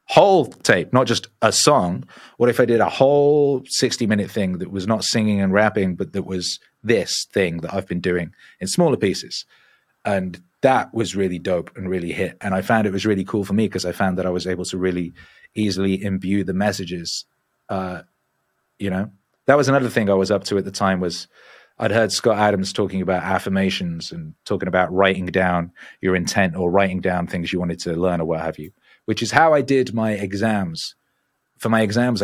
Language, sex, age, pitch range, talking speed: English, male, 30-49, 95-110 Hz, 210 wpm